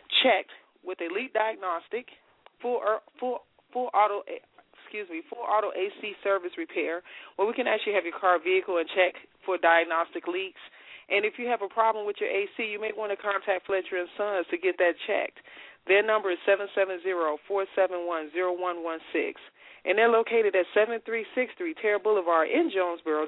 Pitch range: 175-220 Hz